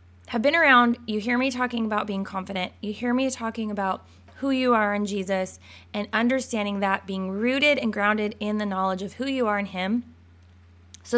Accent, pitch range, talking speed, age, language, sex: American, 190-240 Hz, 200 wpm, 20-39, English, female